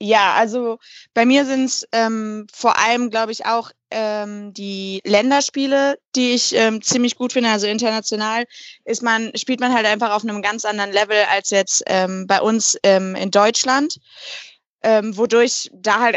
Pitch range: 205-240 Hz